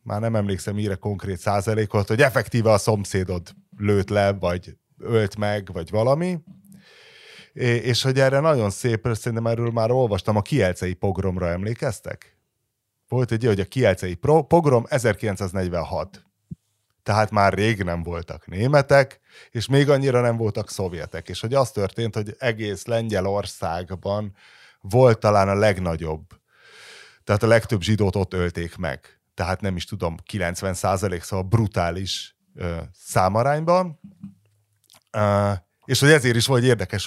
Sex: male